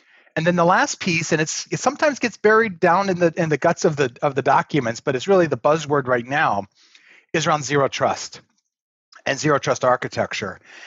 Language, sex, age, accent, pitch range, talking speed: English, male, 30-49, American, 140-180 Hz, 205 wpm